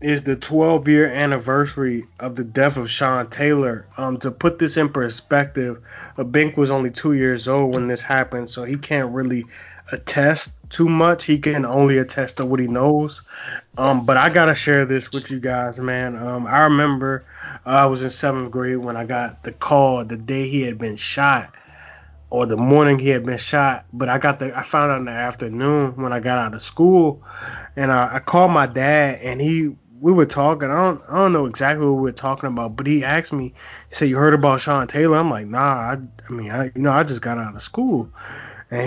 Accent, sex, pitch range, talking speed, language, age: American, male, 125-145 Hz, 220 wpm, English, 20-39